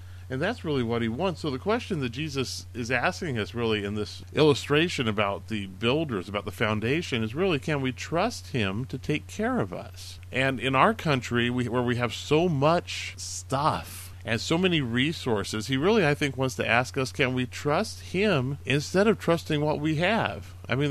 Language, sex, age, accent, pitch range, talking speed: English, male, 40-59, American, 100-150 Hz, 200 wpm